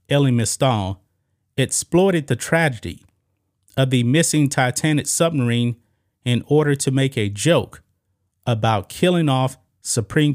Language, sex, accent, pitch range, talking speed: English, male, American, 100-140 Hz, 115 wpm